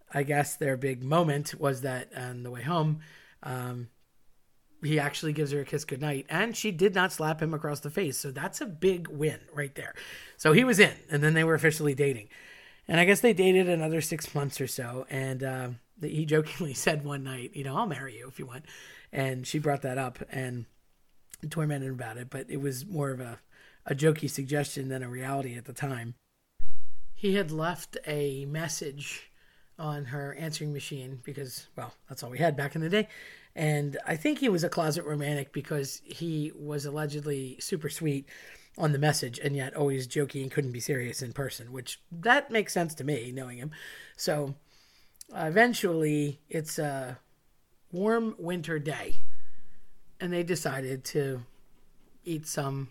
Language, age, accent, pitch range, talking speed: English, 30-49, American, 135-160 Hz, 185 wpm